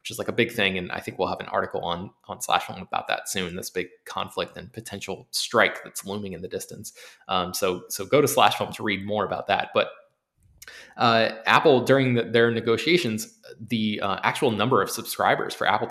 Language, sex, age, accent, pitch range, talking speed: English, male, 20-39, American, 110-135 Hz, 205 wpm